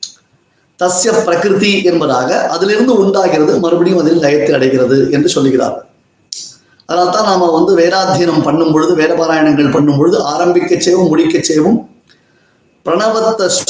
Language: Tamil